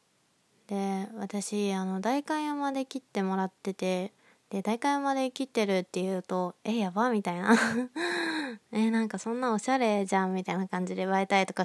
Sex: female